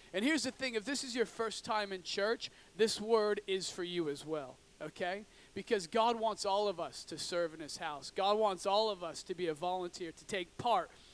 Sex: male